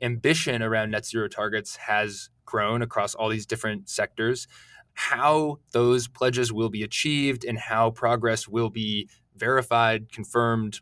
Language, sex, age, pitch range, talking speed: English, male, 20-39, 110-125 Hz, 140 wpm